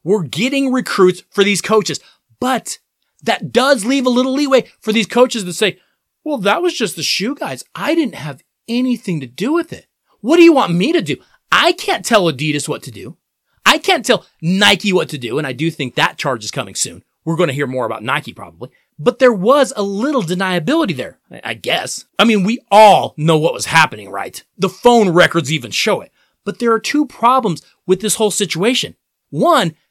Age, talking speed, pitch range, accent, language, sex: 30-49, 210 wpm, 185-265 Hz, American, English, male